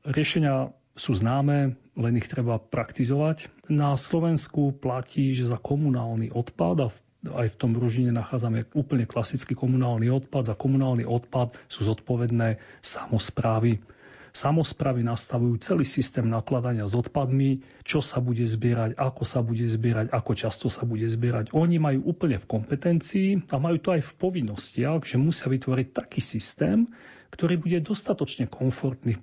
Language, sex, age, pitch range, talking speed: Slovak, male, 40-59, 115-140 Hz, 145 wpm